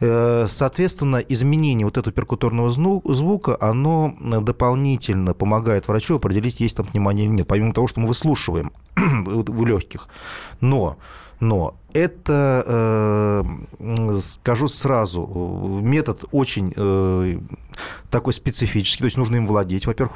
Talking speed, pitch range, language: 115 wpm, 105-130 Hz, Russian